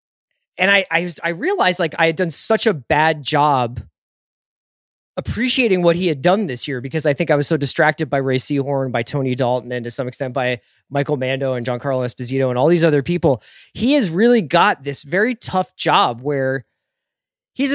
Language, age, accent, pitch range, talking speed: English, 20-39, American, 130-170 Hz, 200 wpm